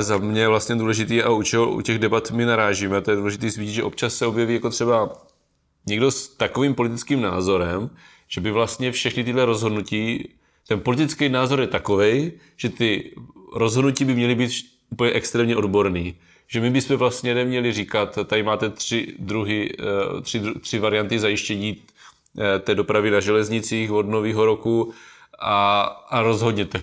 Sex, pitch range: male, 105-125 Hz